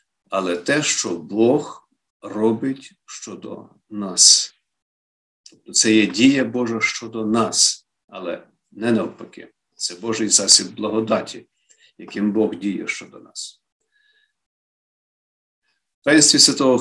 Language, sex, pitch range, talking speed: Ukrainian, male, 110-140 Hz, 105 wpm